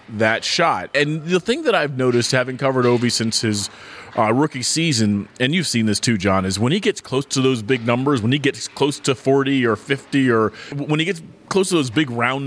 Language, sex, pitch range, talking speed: English, male, 115-160 Hz, 230 wpm